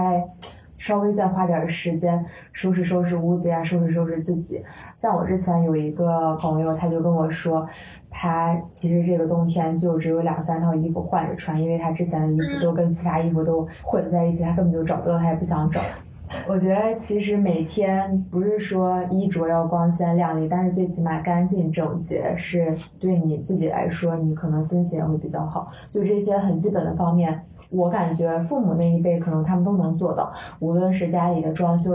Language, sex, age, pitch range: Chinese, female, 20-39, 165-180 Hz